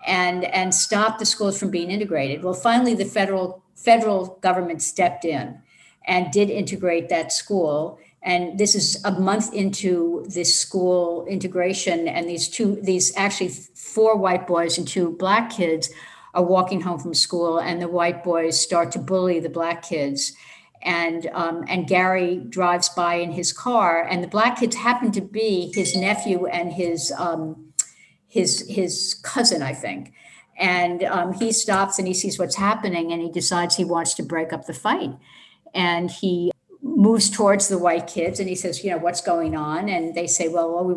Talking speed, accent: 180 wpm, American